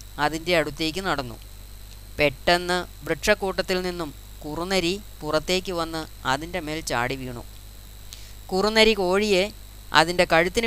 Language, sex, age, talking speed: Malayalam, female, 30-49, 95 wpm